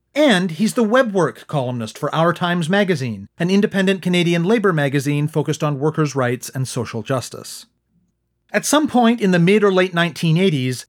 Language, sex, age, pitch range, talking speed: English, male, 40-59, 145-205 Hz, 170 wpm